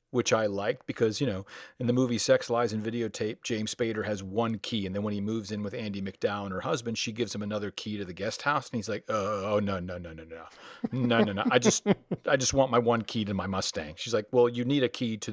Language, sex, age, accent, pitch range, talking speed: English, male, 40-59, American, 110-145 Hz, 280 wpm